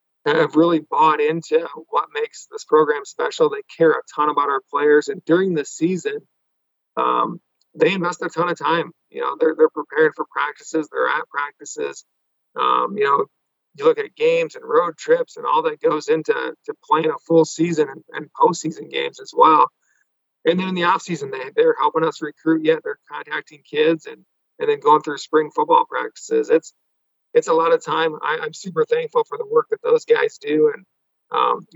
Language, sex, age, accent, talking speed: English, male, 40-59, American, 200 wpm